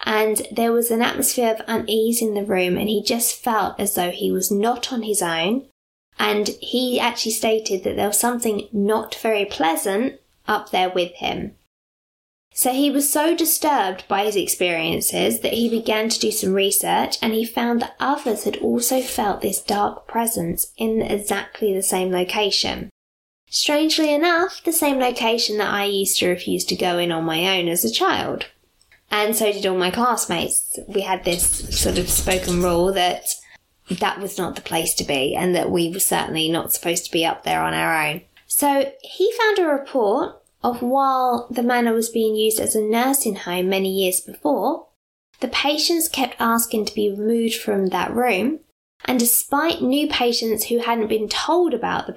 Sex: female